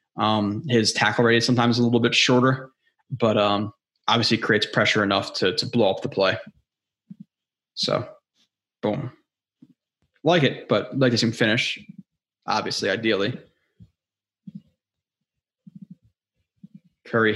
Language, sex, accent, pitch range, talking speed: English, male, American, 115-145 Hz, 120 wpm